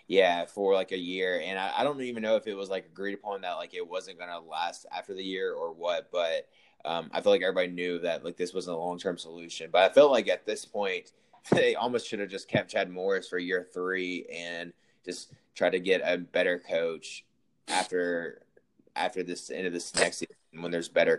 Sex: male